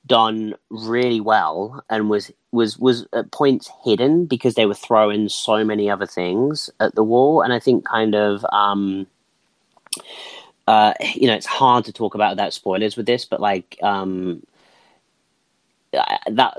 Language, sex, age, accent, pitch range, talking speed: English, male, 30-49, British, 100-125 Hz, 155 wpm